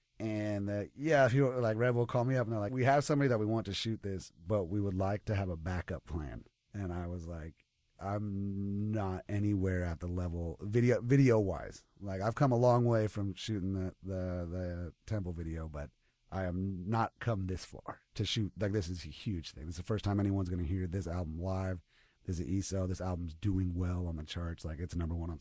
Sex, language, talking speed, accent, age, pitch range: male, English, 235 wpm, American, 30-49, 90-110 Hz